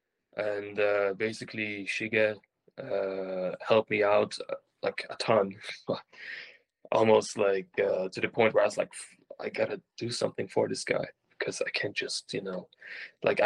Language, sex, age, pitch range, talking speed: German, male, 20-39, 100-125 Hz, 160 wpm